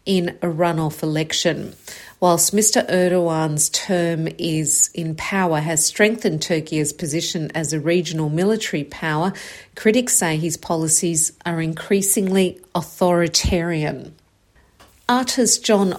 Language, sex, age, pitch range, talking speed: English, female, 50-69, 155-185 Hz, 110 wpm